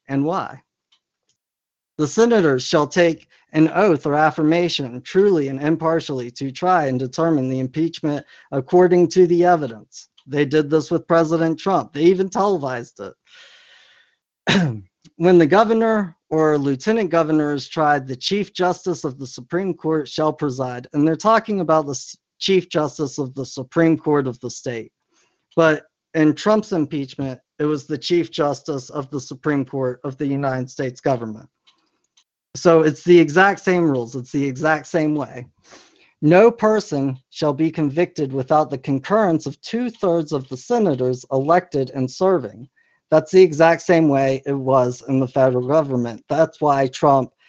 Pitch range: 135-170 Hz